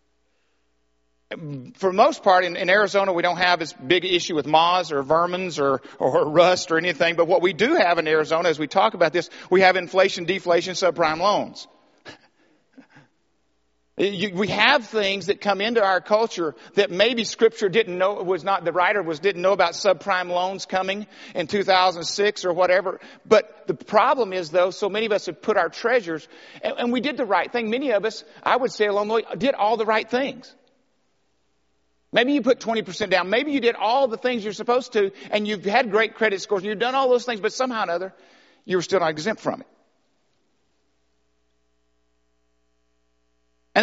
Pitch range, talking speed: 165-220 Hz, 190 wpm